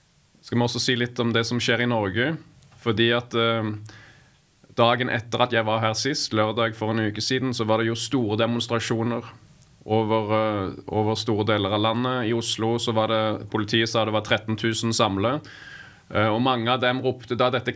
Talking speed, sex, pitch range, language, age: 195 wpm, male, 110-125 Hz, English, 20-39